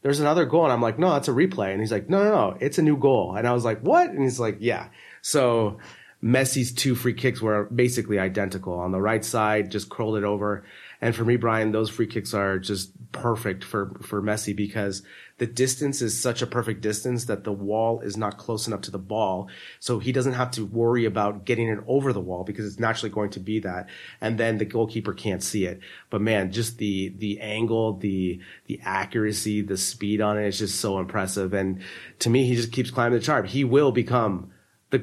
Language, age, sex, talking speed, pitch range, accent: English, 30-49, male, 225 wpm, 105-125 Hz, American